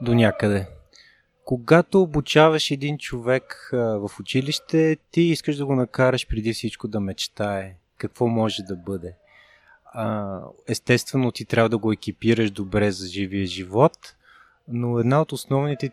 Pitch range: 105-130 Hz